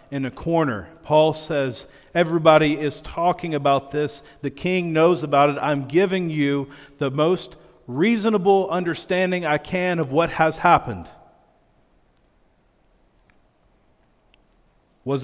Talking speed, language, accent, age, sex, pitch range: 115 wpm, English, American, 40-59, male, 125-155 Hz